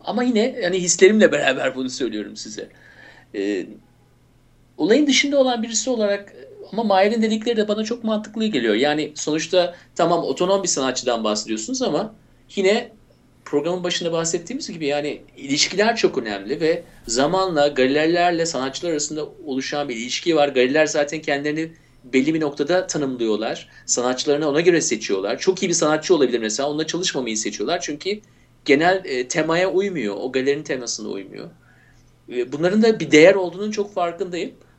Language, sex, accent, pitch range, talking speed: Turkish, male, native, 145-215 Hz, 145 wpm